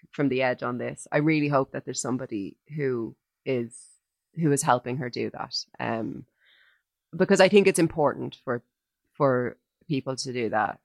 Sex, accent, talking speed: female, Irish, 170 wpm